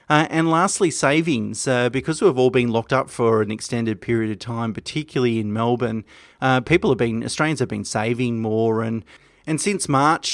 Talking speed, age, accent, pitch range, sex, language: 195 wpm, 30-49, Australian, 115-135 Hz, male, English